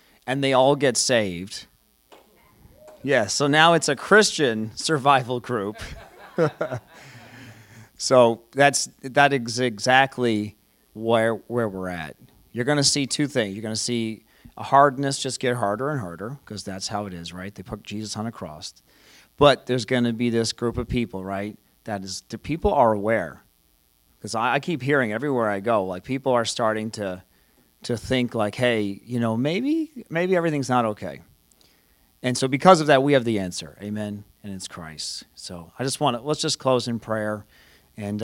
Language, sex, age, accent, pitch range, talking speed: English, male, 40-59, American, 100-130 Hz, 175 wpm